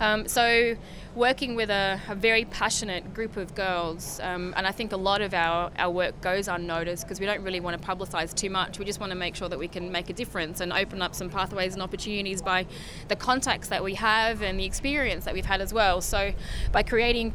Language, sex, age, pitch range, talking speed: English, female, 20-39, 185-225 Hz, 235 wpm